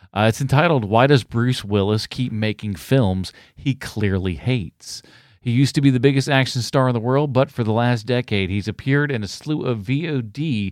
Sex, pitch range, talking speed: male, 105-130 Hz, 200 wpm